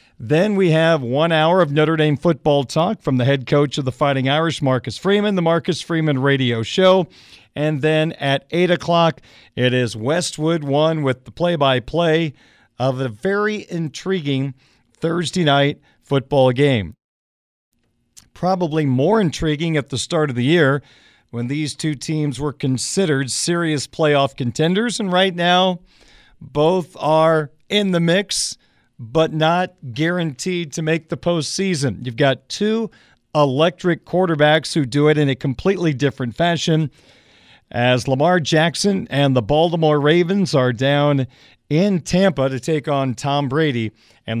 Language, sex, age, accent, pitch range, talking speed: English, male, 50-69, American, 130-165 Hz, 145 wpm